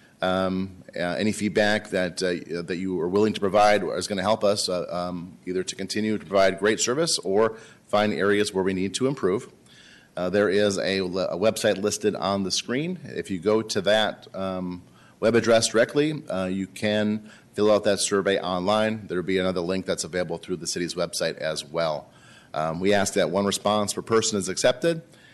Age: 30-49